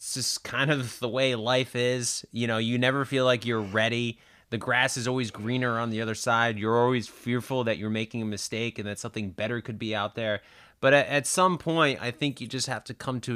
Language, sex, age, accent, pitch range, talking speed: English, male, 30-49, American, 115-155 Hz, 245 wpm